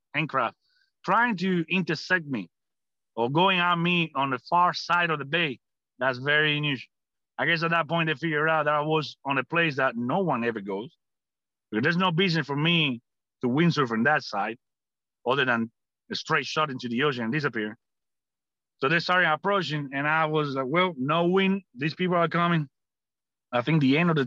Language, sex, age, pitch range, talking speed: English, male, 40-59, 130-175 Hz, 200 wpm